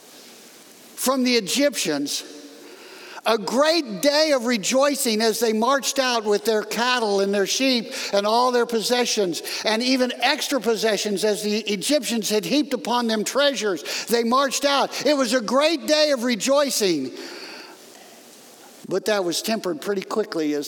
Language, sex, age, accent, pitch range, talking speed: English, male, 60-79, American, 205-320 Hz, 150 wpm